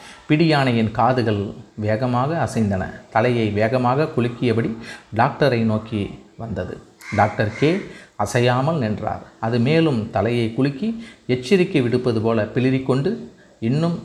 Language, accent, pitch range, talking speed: Tamil, native, 110-130 Hz, 105 wpm